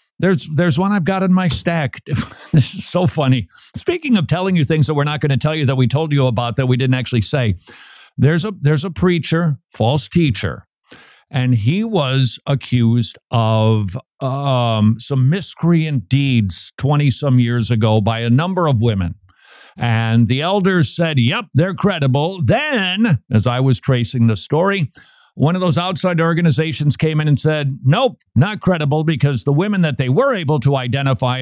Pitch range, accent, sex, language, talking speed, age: 120-170 Hz, American, male, English, 180 wpm, 50-69